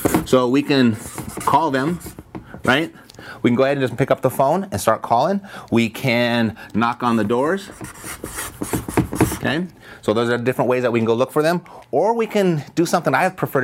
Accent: American